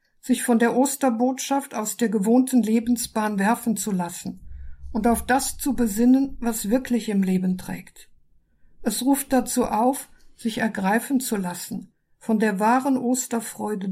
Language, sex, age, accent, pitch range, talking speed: German, female, 50-69, German, 210-250 Hz, 140 wpm